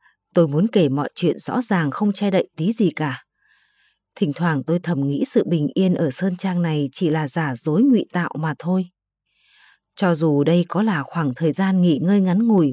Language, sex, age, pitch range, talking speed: Vietnamese, female, 20-39, 165-215 Hz, 210 wpm